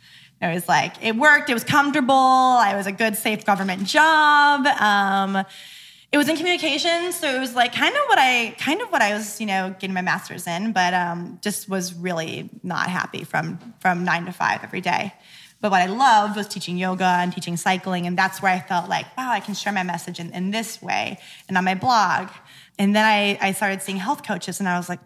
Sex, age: female, 20-39